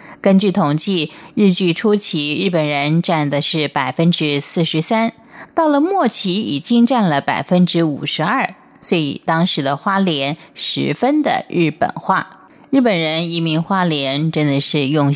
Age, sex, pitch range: 30-49, female, 150-225 Hz